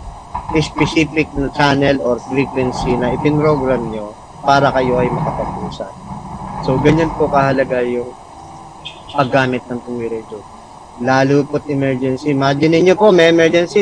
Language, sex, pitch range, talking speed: Filipino, male, 135-185 Hz, 115 wpm